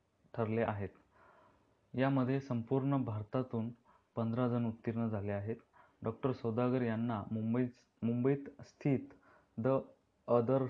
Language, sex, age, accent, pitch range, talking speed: Marathi, male, 30-49, native, 110-125 Hz, 95 wpm